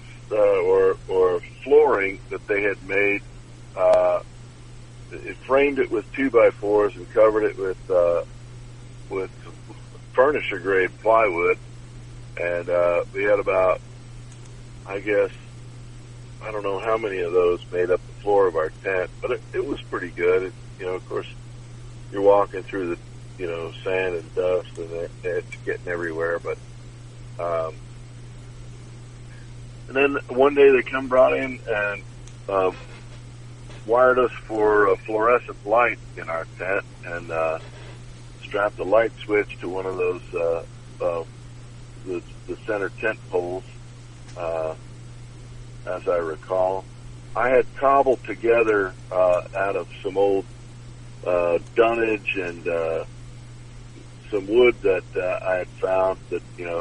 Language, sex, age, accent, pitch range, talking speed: English, male, 50-69, American, 110-125 Hz, 140 wpm